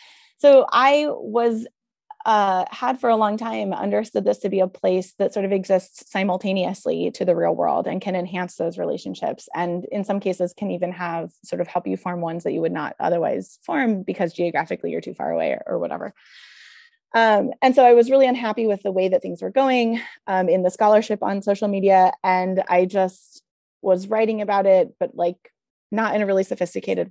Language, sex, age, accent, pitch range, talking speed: English, female, 20-39, American, 180-220 Hz, 205 wpm